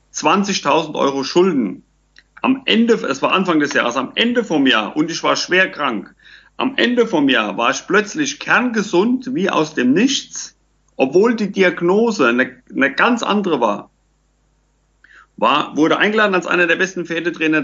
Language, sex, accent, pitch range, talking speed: German, male, German, 155-235 Hz, 160 wpm